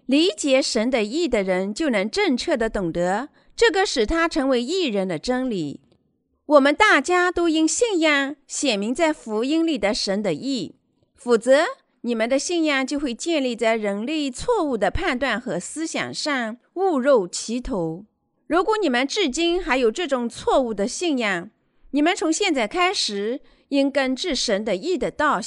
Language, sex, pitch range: Chinese, female, 235-330 Hz